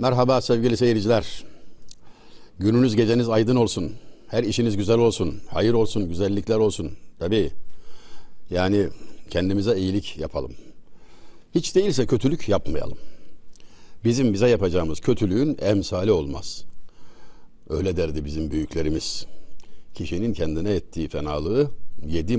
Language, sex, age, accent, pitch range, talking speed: Turkish, male, 60-79, native, 85-125 Hz, 105 wpm